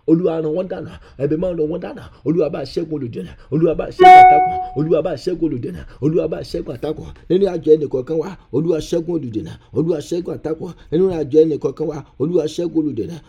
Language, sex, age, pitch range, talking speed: English, male, 50-69, 145-170 Hz, 235 wpm